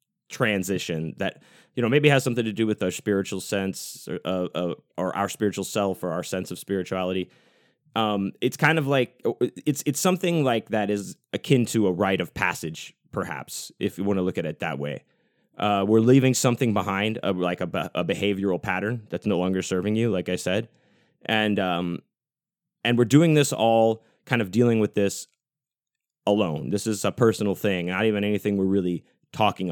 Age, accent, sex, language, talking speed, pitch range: 20-39, American, male, English, 190 wpm, 95-120 Hz